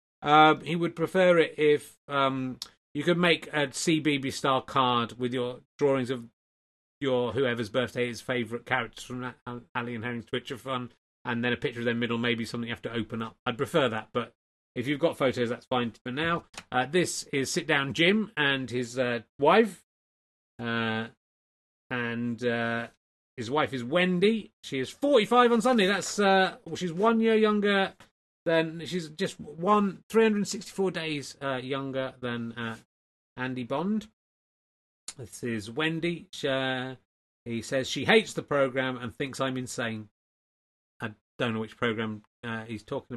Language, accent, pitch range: English, British, 115-155 Hz